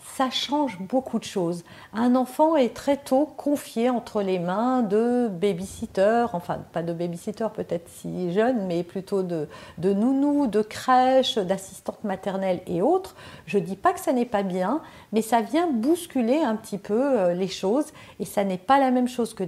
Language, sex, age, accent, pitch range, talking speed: French, female, 50-69, French, 185-255 Hz, 185 wpm